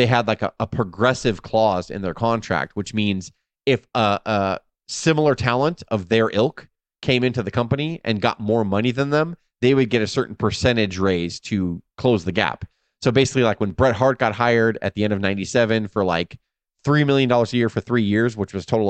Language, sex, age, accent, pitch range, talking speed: English, male, 20-39, American, 100-125 Hz, 215 wpm